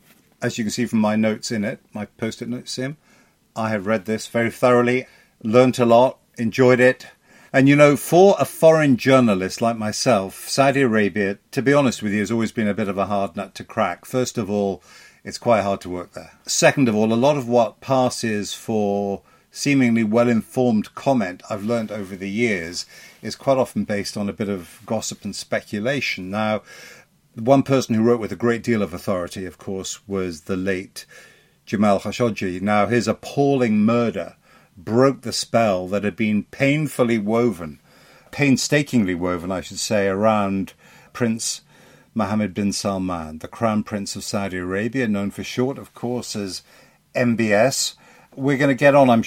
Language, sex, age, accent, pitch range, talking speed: English, male, 50-69, British, 100-125 Hz, 180 wpm